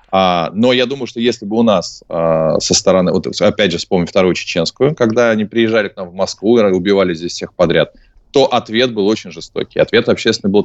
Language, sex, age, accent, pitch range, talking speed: Russian, male, 20-39, native, 85-115 Hz, 215 wpm